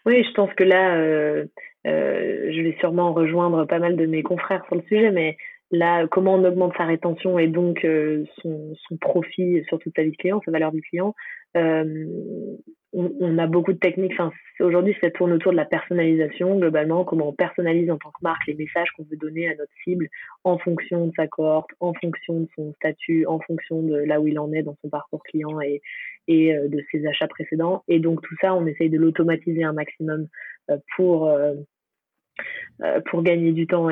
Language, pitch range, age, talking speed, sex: French, 155-180 Hz, 20-39, 205 wpm, female